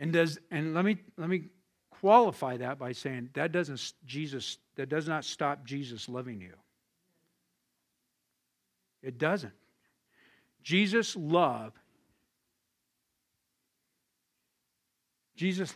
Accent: American